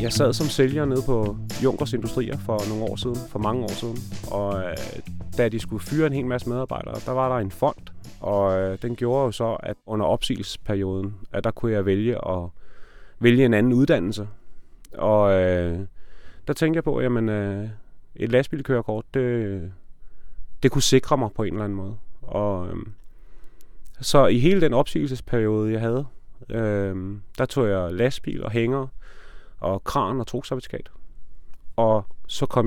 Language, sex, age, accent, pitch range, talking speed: English, male, 30-49, Danish, 90-125 Hz, 160 wpm